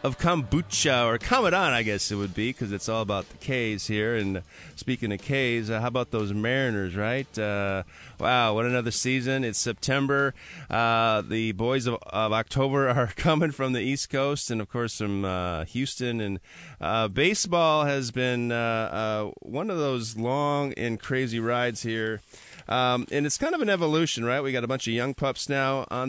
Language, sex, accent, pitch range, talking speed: English, male, American, 105-135 Hz, 190 wpm